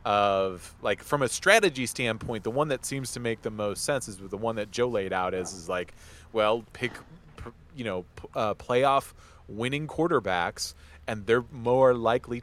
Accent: American